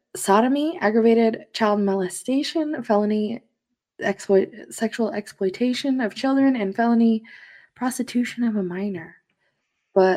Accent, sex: American, female